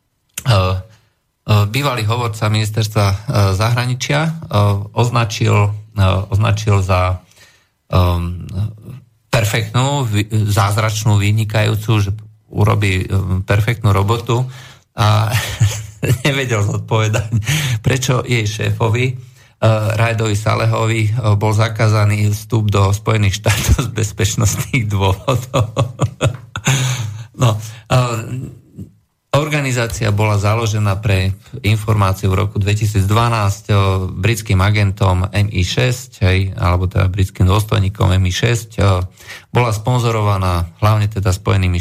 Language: Slovak